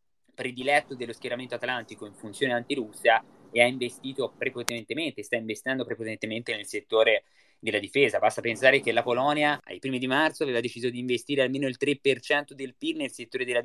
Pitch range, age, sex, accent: 120-145 Hz, 20-39, male, native